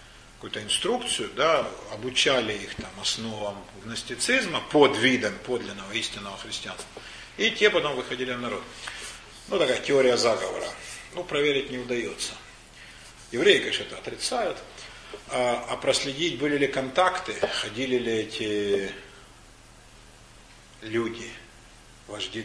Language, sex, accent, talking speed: Russian, male, native, 110 wpm